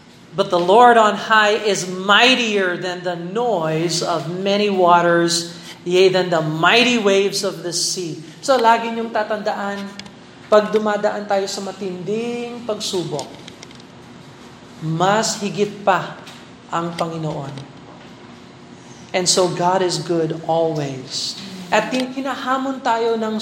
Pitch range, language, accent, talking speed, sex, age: 180-225 Hz, Filipino, native, 120 wpm, male, 40-59